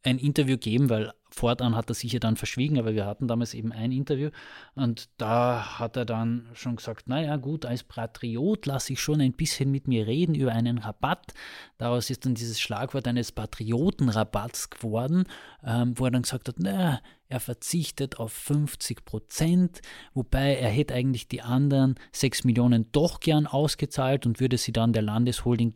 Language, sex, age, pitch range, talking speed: German, male, 20-39, 115-135 Hz, 185 wpm